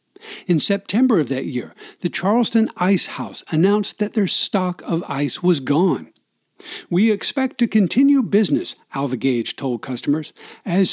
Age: 60-79